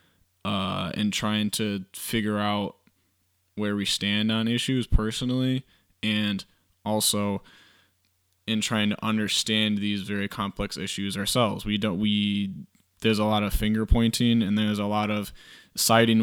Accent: American